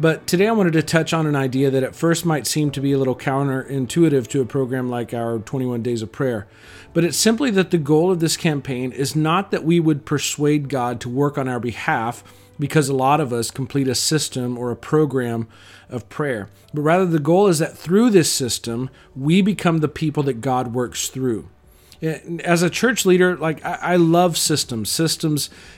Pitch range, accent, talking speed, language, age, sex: 125-160 Hz, American, 205 wpm, English, 40-59, male